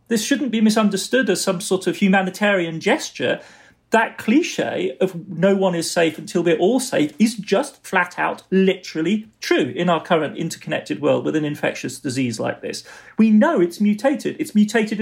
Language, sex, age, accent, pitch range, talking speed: English, male, 40-59, British, 175-240 Hz, 175 wpm